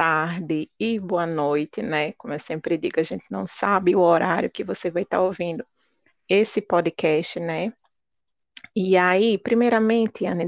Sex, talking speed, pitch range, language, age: female, 155 wpm, 180-230 Hz, Portuguese, 20-39